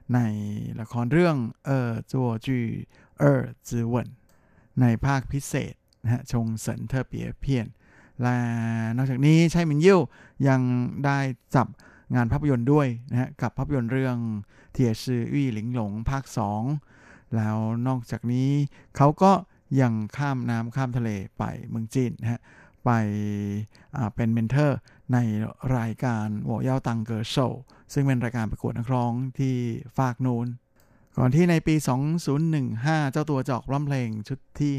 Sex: male